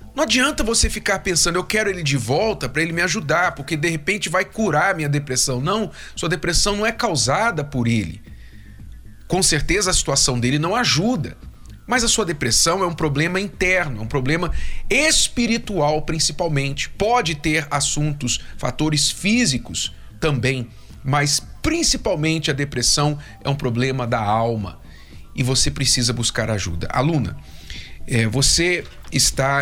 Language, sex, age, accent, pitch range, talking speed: Portuguese, male, 40-59, Brazilian, 115-160 Hz, 150 wpm